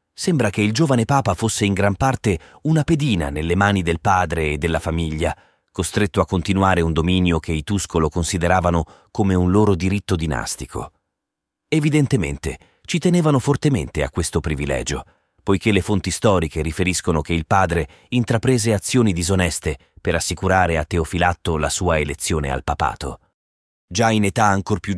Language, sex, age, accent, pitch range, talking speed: Italian, male, 30-49, native, 85-110 Hz, 155 wpm